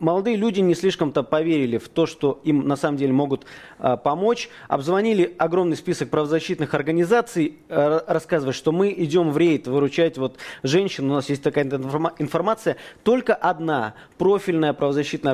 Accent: native